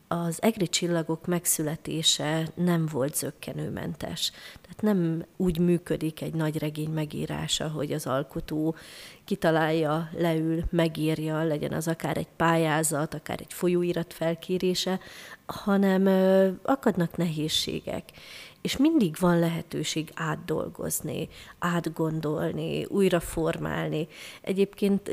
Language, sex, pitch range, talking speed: Hungarian, female, 160-185 Hz, 100 wpm